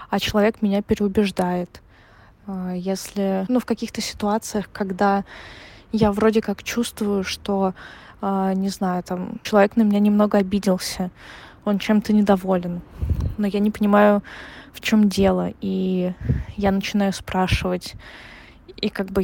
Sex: female